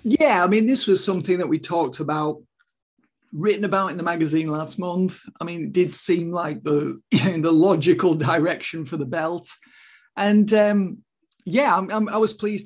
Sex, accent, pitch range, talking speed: male, British, 160-195 Hz, 170 wpm